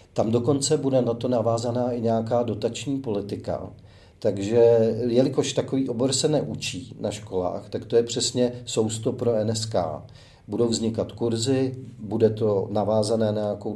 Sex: male